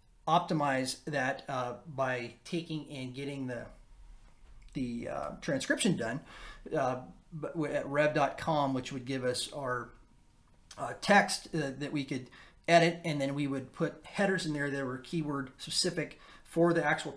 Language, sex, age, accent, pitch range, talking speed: English, male, 30-49, American, 125-155 Hz, 145 wpm